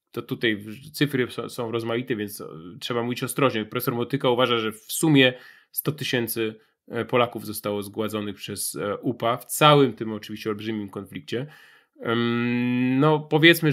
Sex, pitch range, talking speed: male, 110-135 Hz, 130 wpm